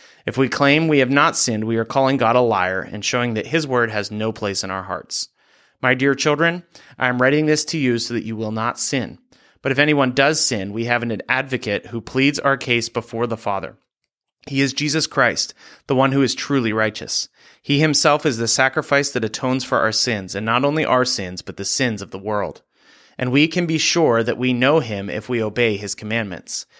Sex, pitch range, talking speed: male, 110-140 Hz, 225 wpm